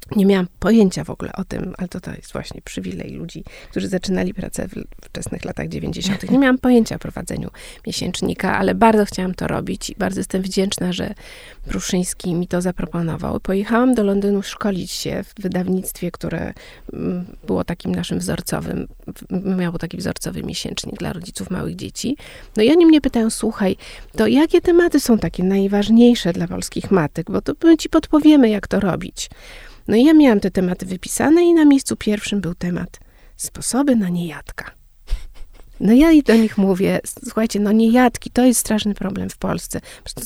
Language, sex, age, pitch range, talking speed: Polish, female, 30-49, 190-235 Hz, 170 wpm